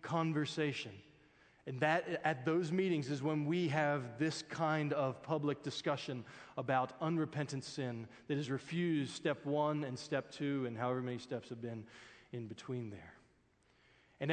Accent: American